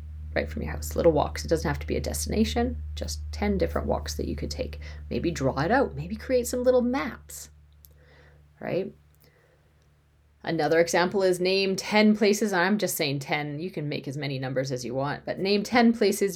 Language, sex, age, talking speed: English, female, 30-49, 200 wpm